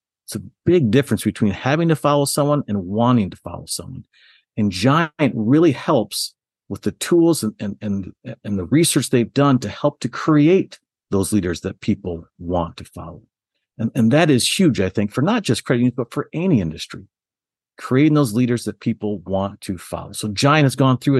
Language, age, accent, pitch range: English, 50-69, American, 105-135 Hz